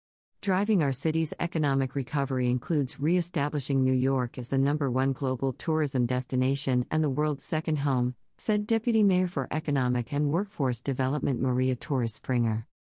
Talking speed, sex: 150 wpm, female